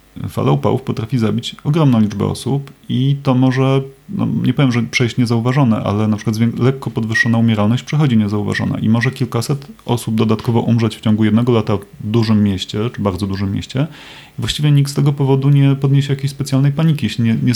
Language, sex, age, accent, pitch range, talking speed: Polish, male, 30-49, native, 110-135 Hz, 185 wpm